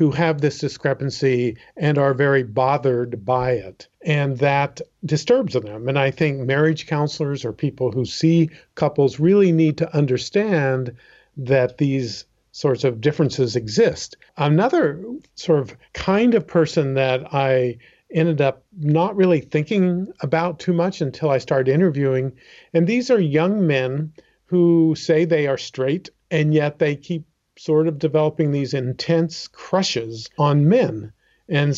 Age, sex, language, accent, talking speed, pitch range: 50-69, male, English, American, 145 wpm, 130-165 Hz